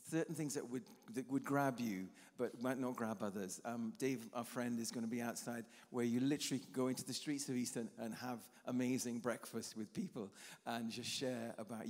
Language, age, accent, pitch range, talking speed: English, 40-59, British, 115-140 Hz, 215 wpm